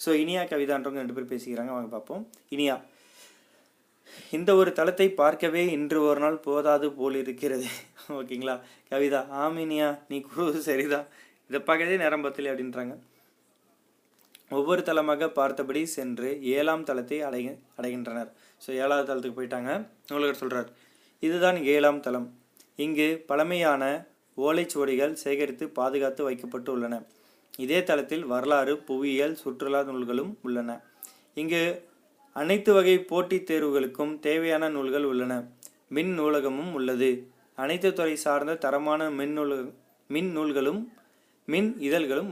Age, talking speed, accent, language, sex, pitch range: 30-49, 110 wpm, native, Tamil, male, 130-160 Hz